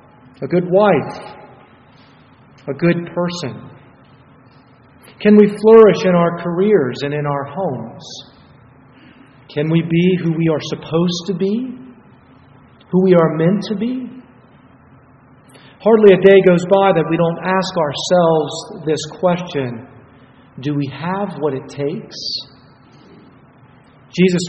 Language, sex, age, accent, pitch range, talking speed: English, male, 40-59, American, 130-190 Hz, 125 wpm